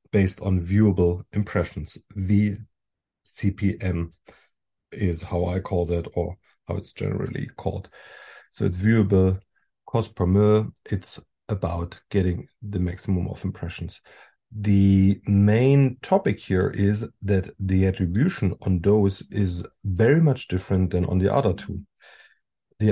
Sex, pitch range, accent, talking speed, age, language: male, 95-105 Hz, German, 125 wpm, 40-59, English